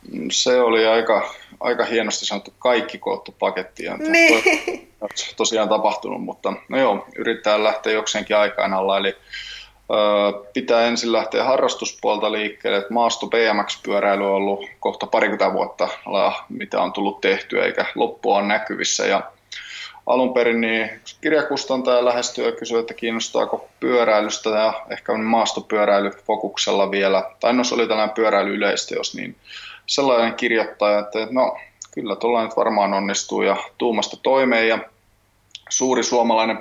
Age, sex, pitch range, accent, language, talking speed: 20-39, male, 105-115 Hz, native, Finnish, 120 wpm